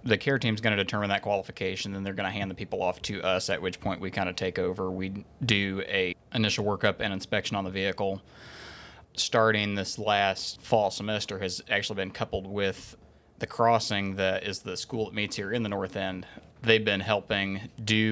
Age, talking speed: 20-39, 210 wpm